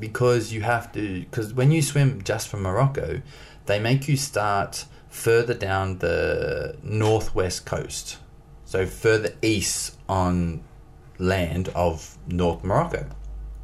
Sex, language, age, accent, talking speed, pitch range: male, English, 20-39, Australian, 125 wpm, 90-120 Hz